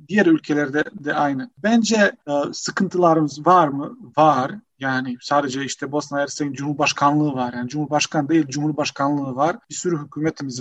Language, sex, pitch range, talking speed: Turkish, male, 145-185 Hz, 140 wpm